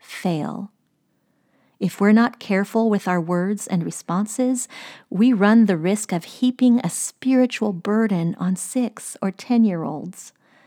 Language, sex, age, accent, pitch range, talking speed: English, female, 40-59, American, 180-220 Hz, 140 wpm